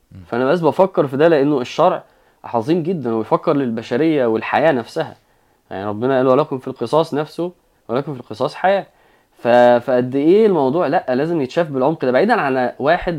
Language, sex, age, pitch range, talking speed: Arabic, male, 20-39, 115-155 Hz, 160 wpm